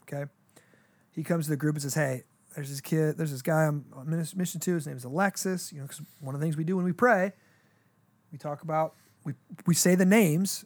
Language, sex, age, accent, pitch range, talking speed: English, male, 30-49, American, 145-170 Hz, 240 wpm